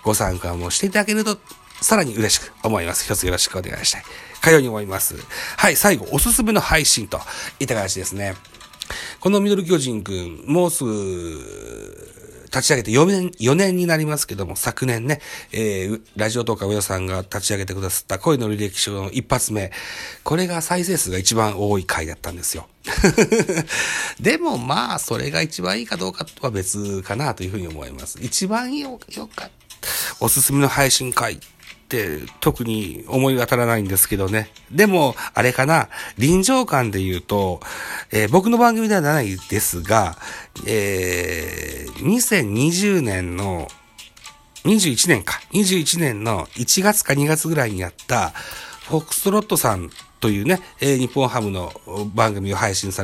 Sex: male